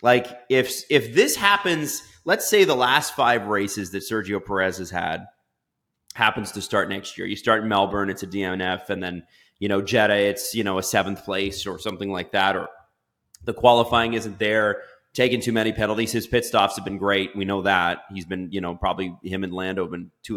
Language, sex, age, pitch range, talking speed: English, male, 30-49, 95-120 Hz, 210 wpm